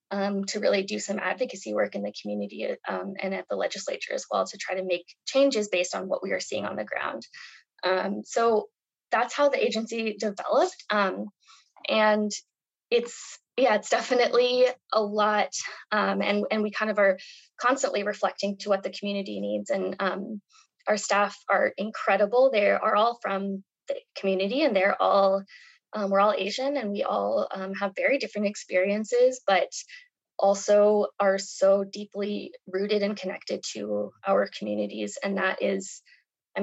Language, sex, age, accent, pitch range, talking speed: English, female, 20-39, American, 195-215 Hz, 165 wpm